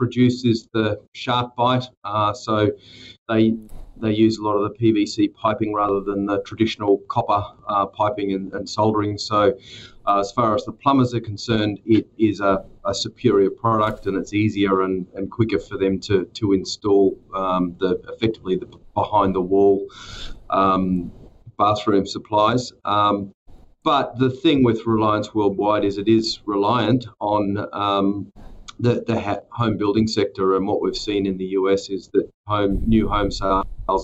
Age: 30-49